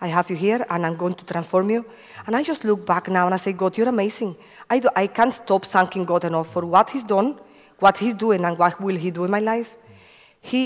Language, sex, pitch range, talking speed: English, female, 185-240 Hz, 260 wpm